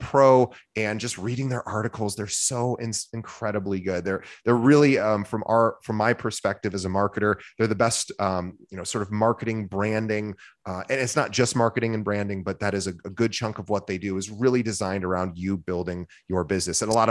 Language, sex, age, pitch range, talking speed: English, male, 30-49, 100-120 Hz, 220 wpm